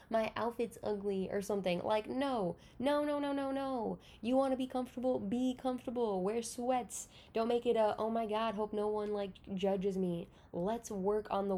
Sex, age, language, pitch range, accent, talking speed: female, 10-29, English, 185-225 Hz, American, 195 wpm